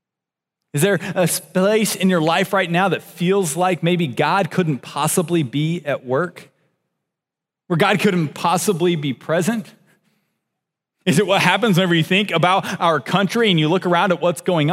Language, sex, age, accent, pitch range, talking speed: English, male, 30-49, American, 155-200 Hz, 170 wpm